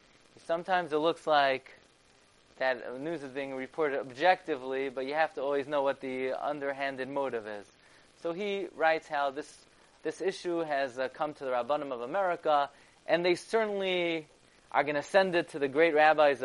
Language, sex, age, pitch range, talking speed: English, male, 20-39, 135-175 Hz, 170 wpm